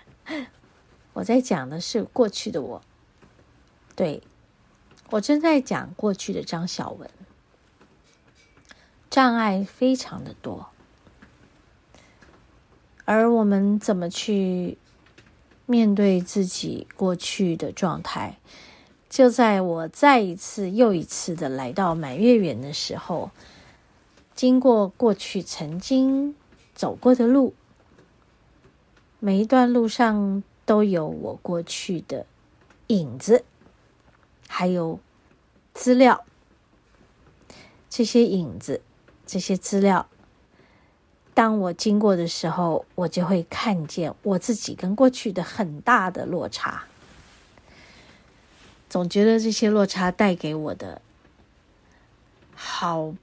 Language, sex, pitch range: Chinese, female, 175-235 Hz